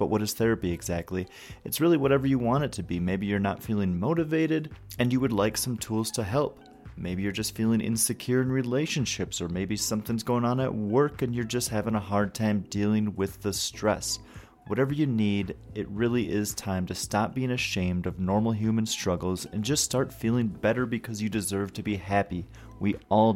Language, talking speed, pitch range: English, 205 wpm, 95-120 Hz